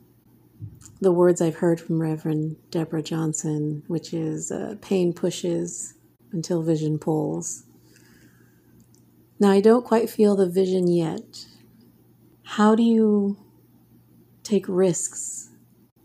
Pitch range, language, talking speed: 160-190 Hz, English, 110 wpm